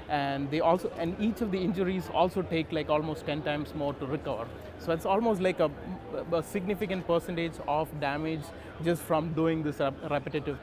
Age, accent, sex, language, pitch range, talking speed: 20-39, Indian, male, English, 145-170 Hz, 180 wpm